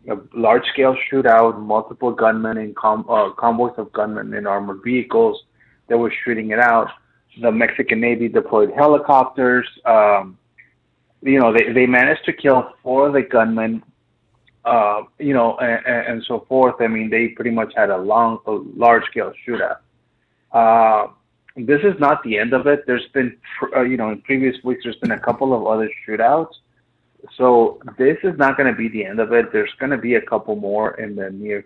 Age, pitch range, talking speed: 20-39, 110-125 Hz, 185 wpm